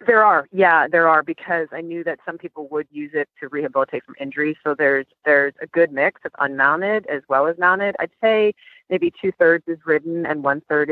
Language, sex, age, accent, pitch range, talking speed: English, female, 30-49, American, 145-195 Hz, 210 wpm